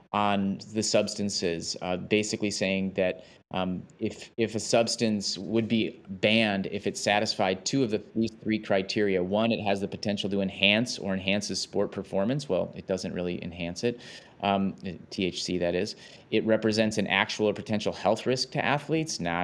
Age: 30-49